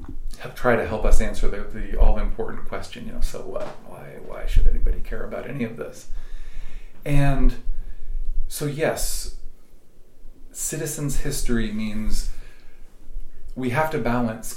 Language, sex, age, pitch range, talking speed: English, male, 40-59, 105-125 Hz, 140 wpm